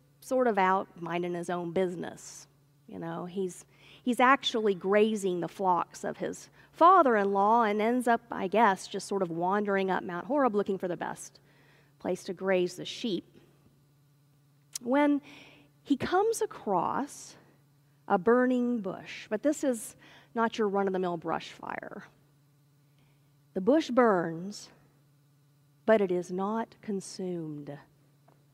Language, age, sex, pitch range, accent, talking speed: English, 40-59, female, 145-220 Hz, American, 130 wpm